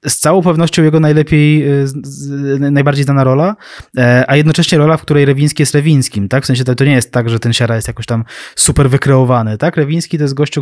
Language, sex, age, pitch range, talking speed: Polish, male, 20-39, 115-140 Hz, 225 wpm